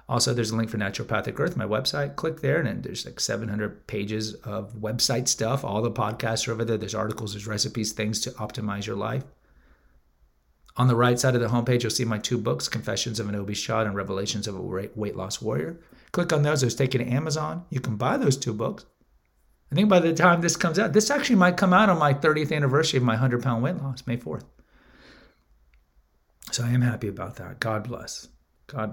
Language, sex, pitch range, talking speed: English, male, 105-135 Hz, 220 wpm